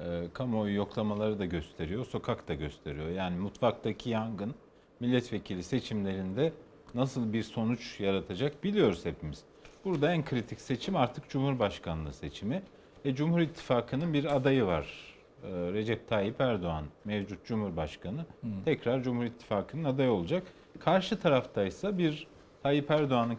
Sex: male